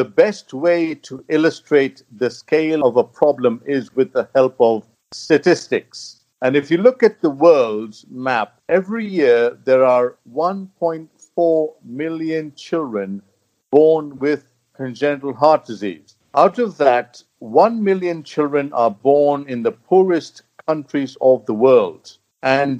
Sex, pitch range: male, 125-175 Hz